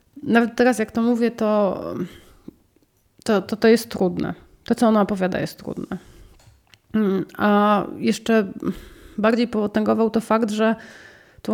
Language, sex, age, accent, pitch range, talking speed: Polish, female, 30-49, native, 185-215 Hz, 130 wpm